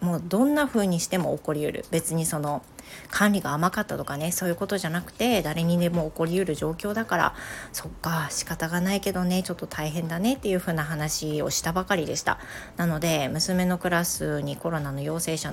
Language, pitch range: Japanese, 155-190 Hz